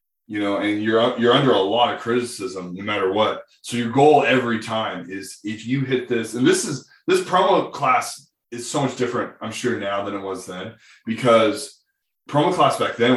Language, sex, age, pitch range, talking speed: English, male, 20-39, 100-125 Hz, 205 wpm